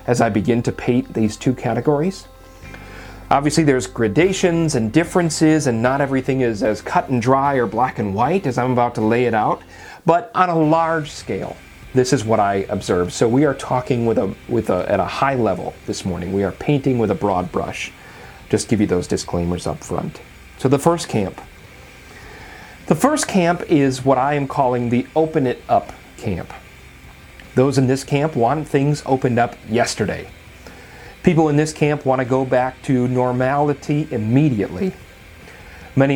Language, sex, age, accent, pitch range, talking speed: English, male, 40-59, American, 105-140 Hz, 180 wpm